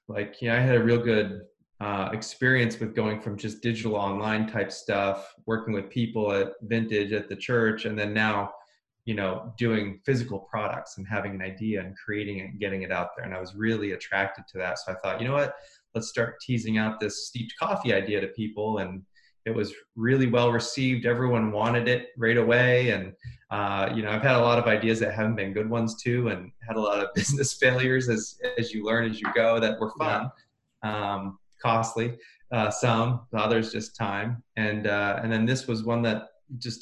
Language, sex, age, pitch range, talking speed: English, male, 20-39, 105-120 Hz, 210 wpm